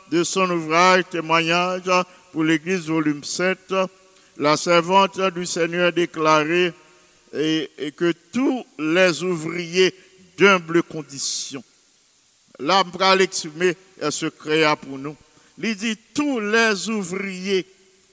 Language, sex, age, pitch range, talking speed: English, male, 50-69, 170-205 Hz, 110 wpm